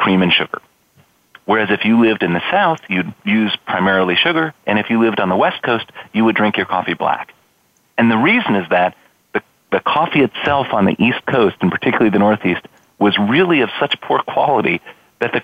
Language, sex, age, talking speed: English, male, 40-59, 205 wpm